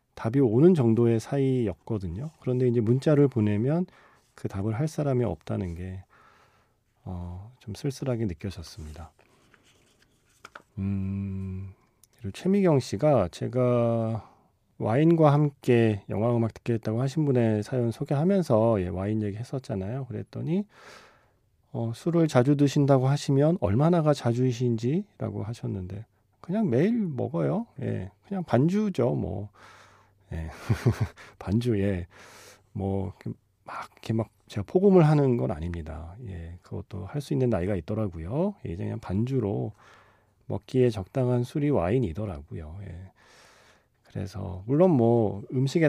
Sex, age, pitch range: male, 40-59, 100-140 Hz